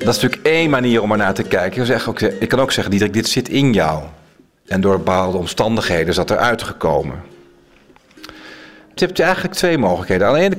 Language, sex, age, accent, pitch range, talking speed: Dutch, male, 40-59, Belgian, 95-115 Hz, 215 wpm